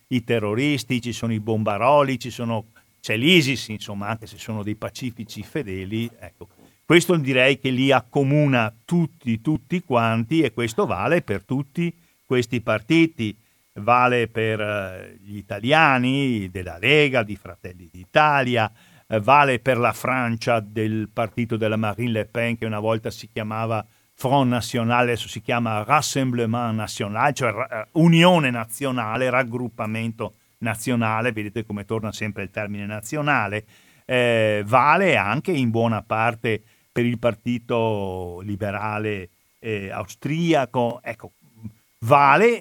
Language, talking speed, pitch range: Italian, 120 wpm, 110-140 Hz